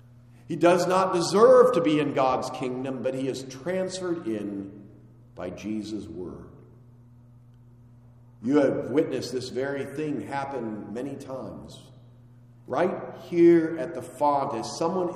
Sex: male